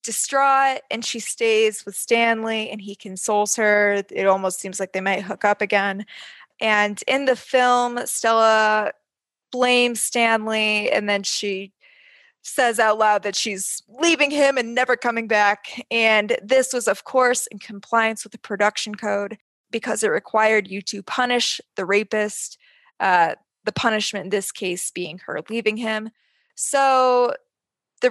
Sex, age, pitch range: female, 20-39, 210-260 Hz